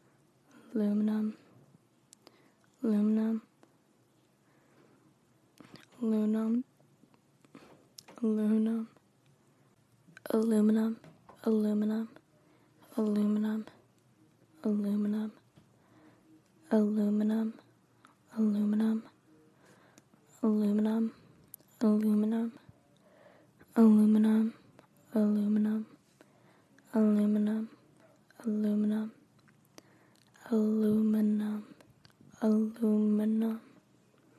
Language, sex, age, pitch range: English, female, 20-39, 210-220 Hz